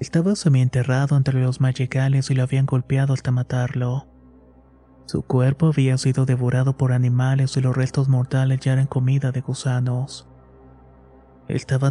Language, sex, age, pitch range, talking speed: Spanish, male, 30-49, 125-135 Hz, 140 wpm